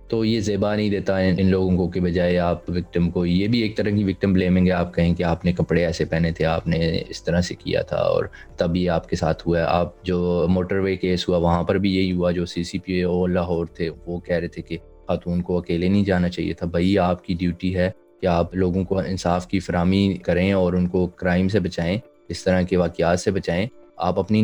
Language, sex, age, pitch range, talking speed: Urdu, male, 20-39, 85-95 Hz, 250 wpm